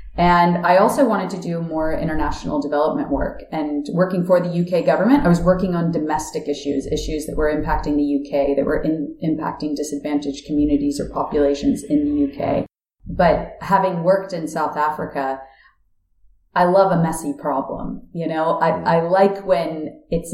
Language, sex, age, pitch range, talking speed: English, female, 30-49, 145-180 Hz, 165 wpm